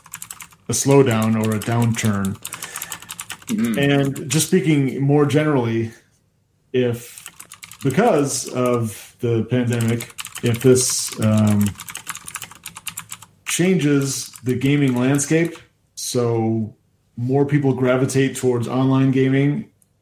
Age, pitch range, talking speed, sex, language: 30-49, 115-135 Hz, 85 wpm, male, English